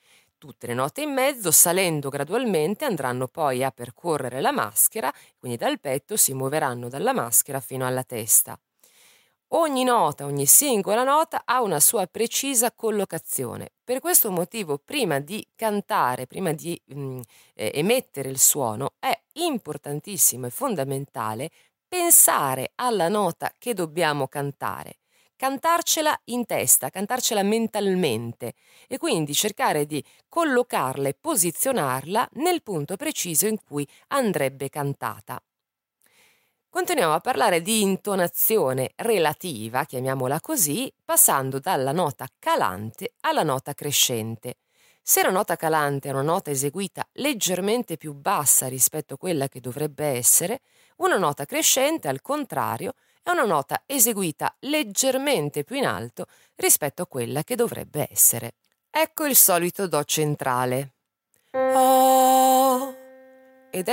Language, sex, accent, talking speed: Italian, female, native, 125 wpm